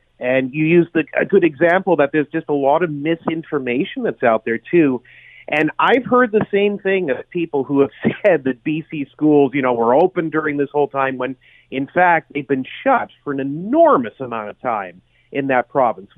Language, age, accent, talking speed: English, 40-59, American, 205 wpm